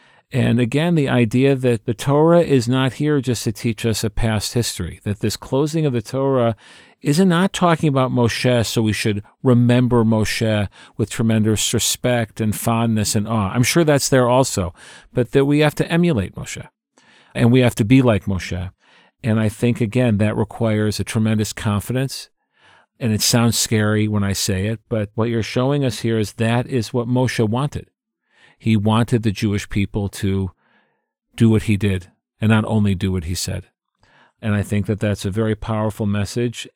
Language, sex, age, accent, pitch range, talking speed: English, male, 50-69, American, 105-125 Hz, 185 wpm